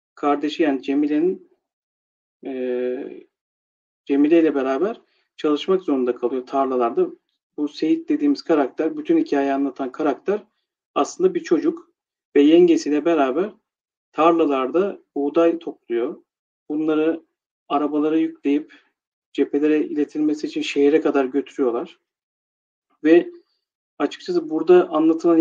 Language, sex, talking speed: Turkish, male, 95 wpm